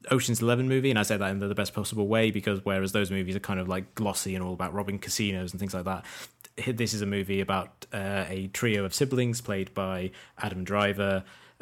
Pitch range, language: 95-110 Hz, English